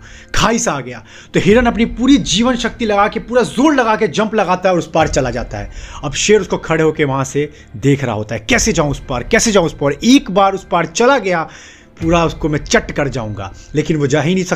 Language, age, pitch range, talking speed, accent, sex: Hindi, 30-49, 135-210 Hz, 85 wpm, native, male